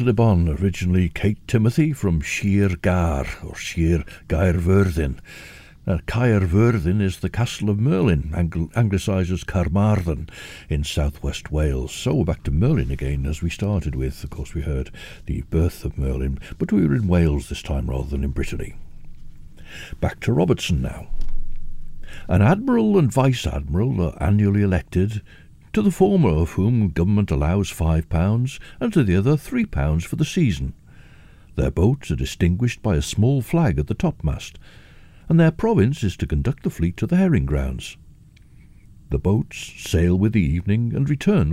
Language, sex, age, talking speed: English, male, 60-79, 165 wpm